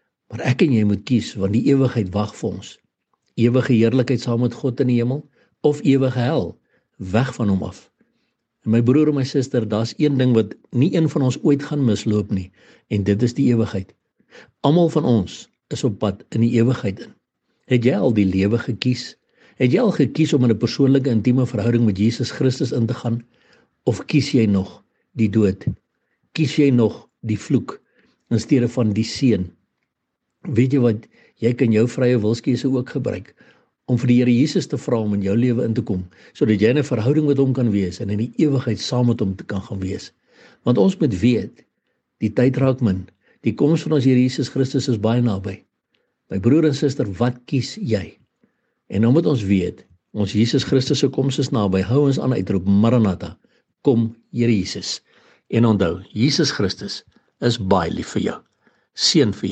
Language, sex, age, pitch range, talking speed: English, male, 60-79, 105-135 Hz, 200 wpm